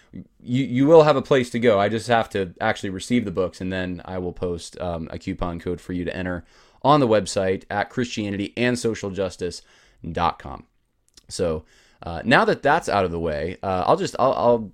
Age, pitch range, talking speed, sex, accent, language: 20-39, 95-115 Hz, 205 wpm, male, American, English